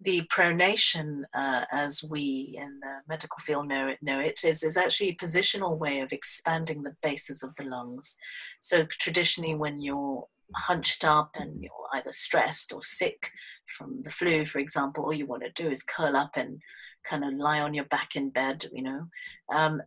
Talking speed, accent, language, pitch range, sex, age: 195 wpm, British, English, 145-180 Hz, female, 30-49